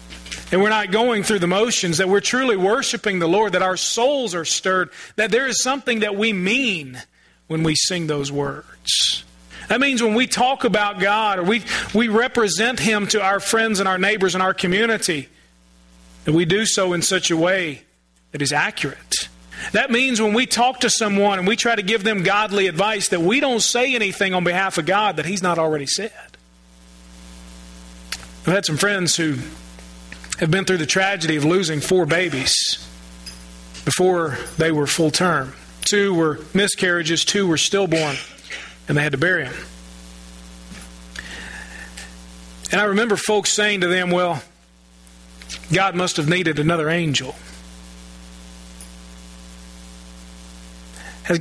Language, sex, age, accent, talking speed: English, male, 40-59, American, 160 wpm